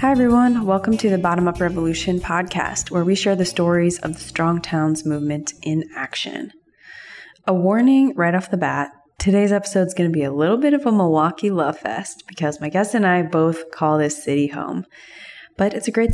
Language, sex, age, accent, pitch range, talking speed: English, female, 20-39, American, 155-195 Hz, 205 wpm